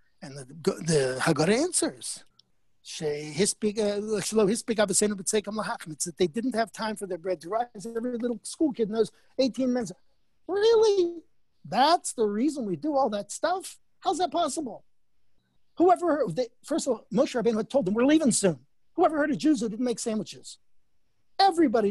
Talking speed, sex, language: 160 wpm, male, English